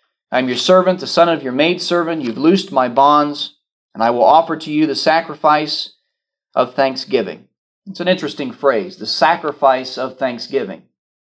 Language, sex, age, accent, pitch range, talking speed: English, male, 40-59, American, 120-175 Hz, 165 wpm